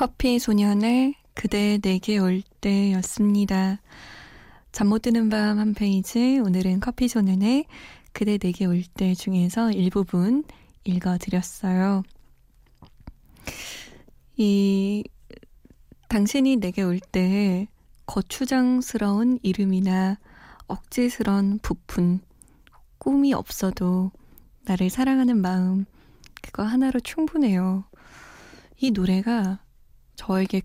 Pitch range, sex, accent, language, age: 185-230 Hz, female, native, Korean, 20-39